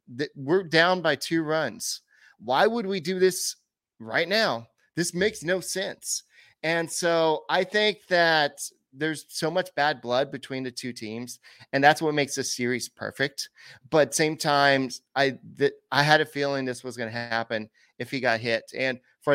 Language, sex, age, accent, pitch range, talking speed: English, male, 30-49, American, 125-165 Hz, 180 wpm